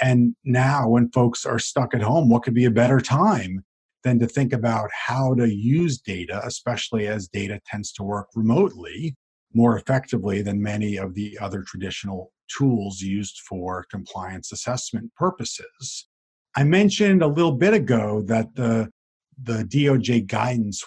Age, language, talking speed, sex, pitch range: 50-69, English, 155 wpm, male, 105-135 Hz